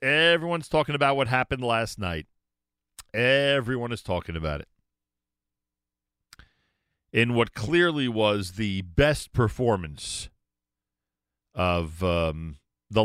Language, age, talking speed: English, 40-59, 100 wpm